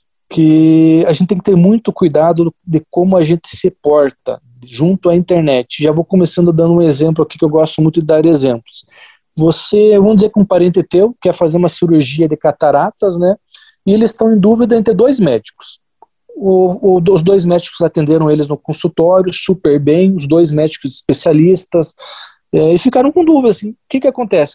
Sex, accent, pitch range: male, Brazilian, 165-215 Hz